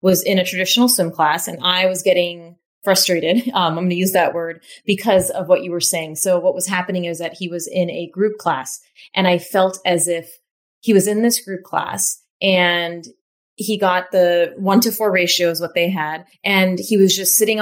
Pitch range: 170-200 Hz